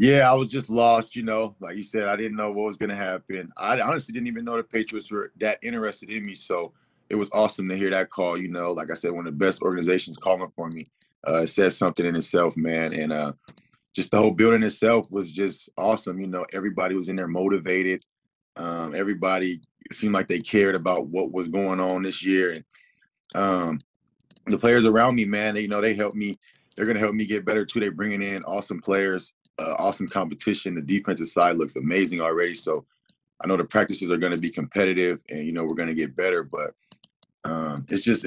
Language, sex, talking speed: English, male, 225 wpm